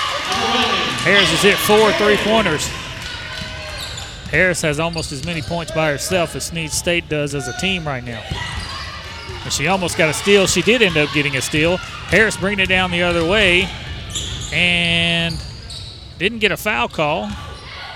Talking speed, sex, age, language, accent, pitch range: 155 wpm, male, 30-49, English, American, 120-170 Hz